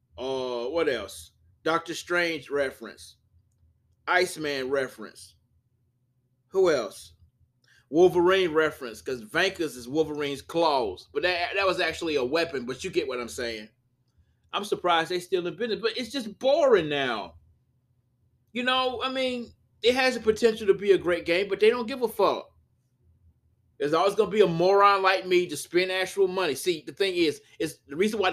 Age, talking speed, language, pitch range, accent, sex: 20-39, 170 wpm, English, 115-185 Hz, American, male